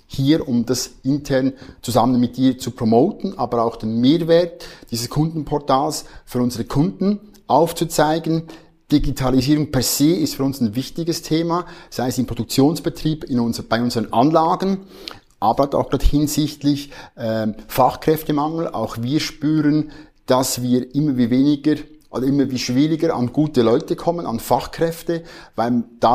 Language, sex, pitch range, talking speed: German, male, 120-150 Hz, 145 wpm